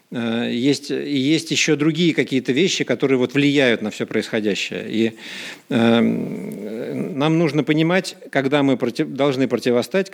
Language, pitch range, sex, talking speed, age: Russian, 120-160 Hz, male, 120 wpm, 50-69